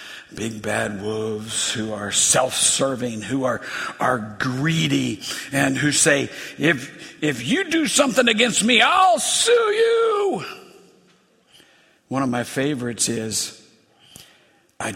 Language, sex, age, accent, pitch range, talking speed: English, male, 60-79, American, 120-180 Hz, 115 wpm